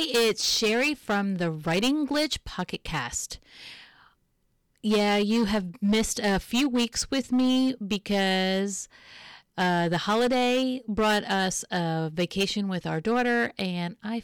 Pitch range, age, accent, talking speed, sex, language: 185-240 Hz, 40-59, American, 125 wpm, female, English